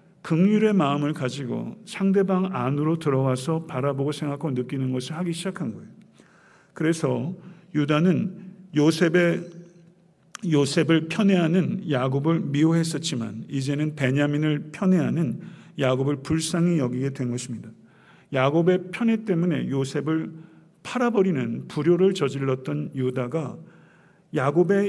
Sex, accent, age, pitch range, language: male, native, 50-69, 130-175 Hz, Korean